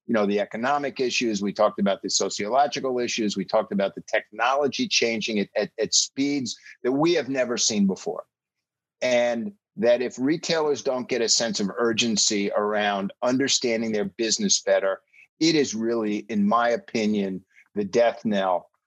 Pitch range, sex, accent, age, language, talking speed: 105-140 Hz, male, American, 50-69, English, 160 wpm